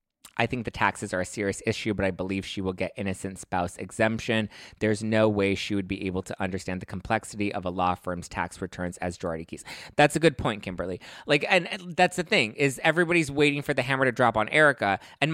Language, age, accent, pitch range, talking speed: English, 20-39, American, 120-185 Hz, 230 wpm